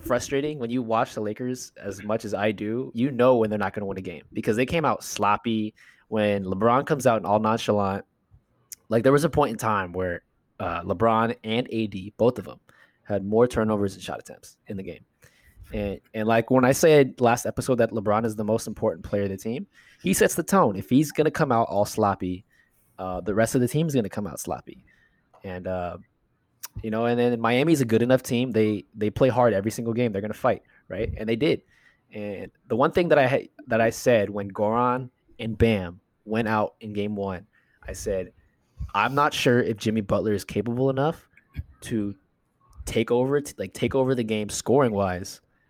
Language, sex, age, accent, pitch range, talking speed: English, male, 20-39, American, 105-125 Hz, 215 wpm